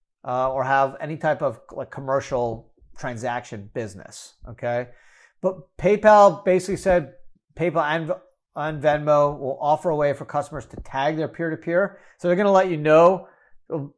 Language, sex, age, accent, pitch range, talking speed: English, male, 40-59, American, 130-175 Hz, 160 wpm